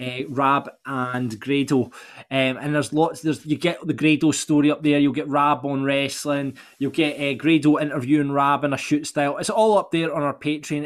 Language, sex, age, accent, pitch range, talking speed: English, male, 20-39, British, 135-160 Hz, 200 wpm